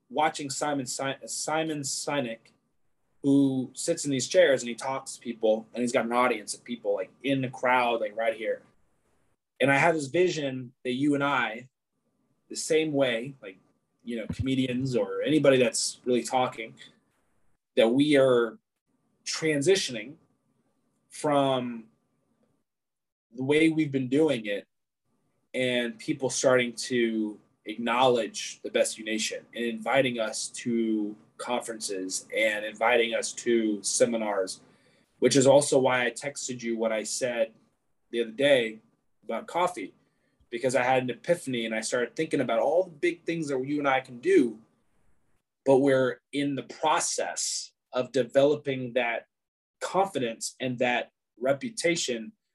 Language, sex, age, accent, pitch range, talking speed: English, male, 20-39, American, 120-145 Hz, 145 wpm